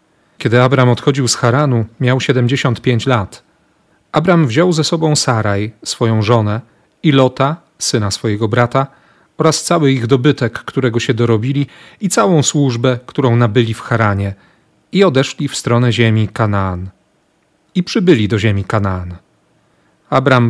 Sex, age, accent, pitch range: male, 40-59, native, 115-145 Hz